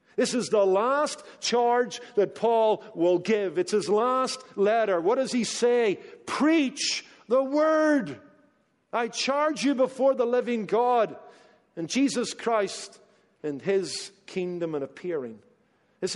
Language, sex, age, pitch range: English, male, 50-69, 150-215 Hz